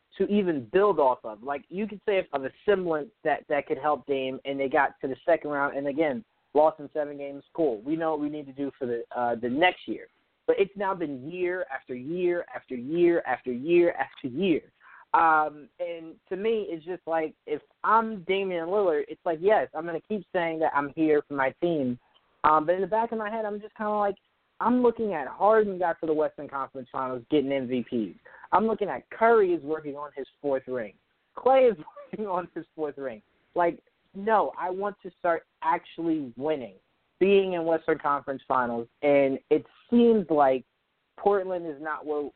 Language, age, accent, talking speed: English, 20-39, American, 205 wpm